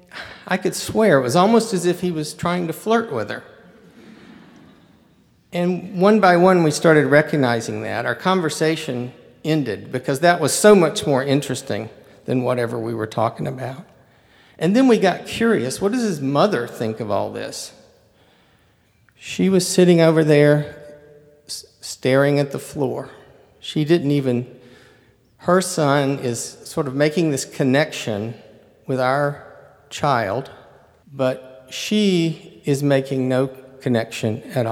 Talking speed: 140 wpm